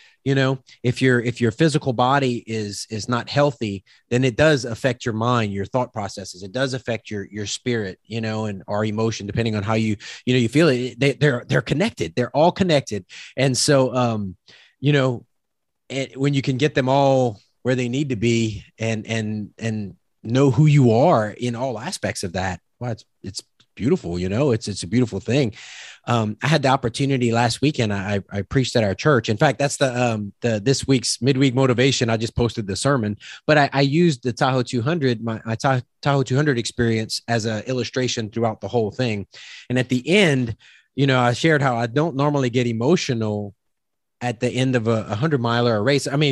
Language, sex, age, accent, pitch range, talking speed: English, male, 30-49, American, 110-135 Hz, 205 wpm